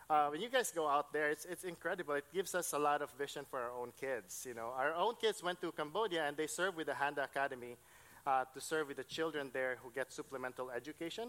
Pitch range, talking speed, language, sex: 130-165 Hz, 250 wpm, English, male